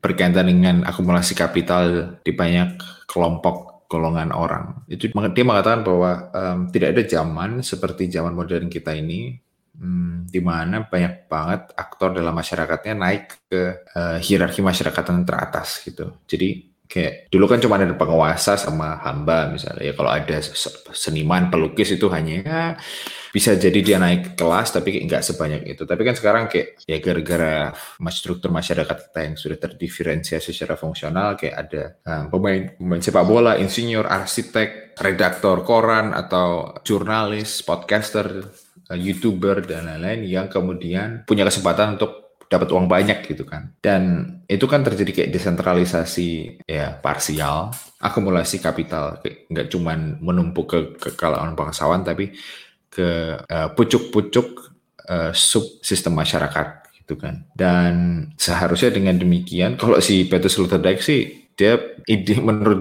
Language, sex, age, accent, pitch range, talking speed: Indonesian, male, 20-39, native, 85-105 Hz, 140 wpm